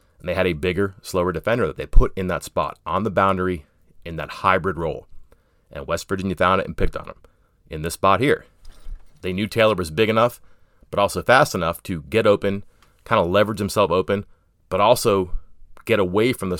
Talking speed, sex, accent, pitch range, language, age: 205 wpm, male, American, 85-105 Hz, English, 30-49